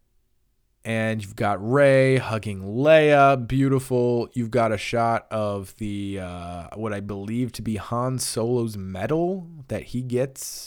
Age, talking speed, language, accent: 20-39, 140 wpm, English, American